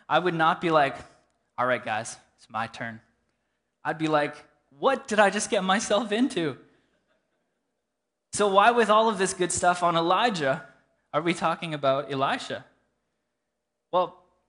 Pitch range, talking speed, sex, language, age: 130-175 Hz, 155 wpm, male, English, 20-39